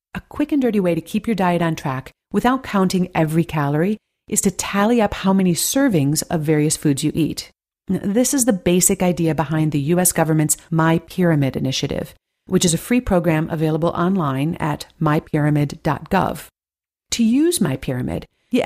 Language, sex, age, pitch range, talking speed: English, female, 40-59, 155-200 Hz, 170 wpm